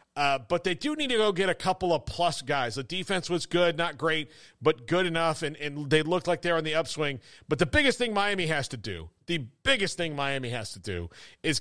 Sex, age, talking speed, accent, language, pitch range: male, 40-59, 250 wpm, American, English, 135-180 Hz